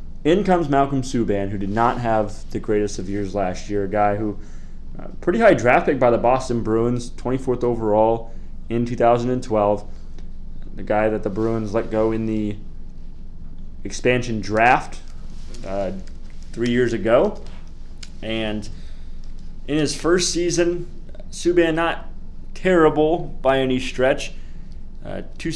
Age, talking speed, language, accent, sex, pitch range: 20-39, 145 wpm, English, American, male, 105-130 Hz